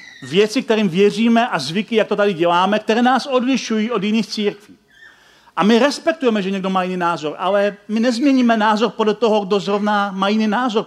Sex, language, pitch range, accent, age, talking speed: male, Czech, 180-225 Hz, native, 40-59, 190 wpm